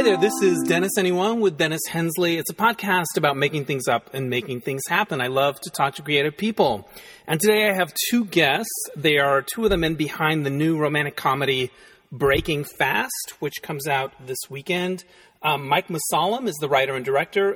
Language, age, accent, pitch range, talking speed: English, 30-49, American, 135-180 Hz, 200 wpm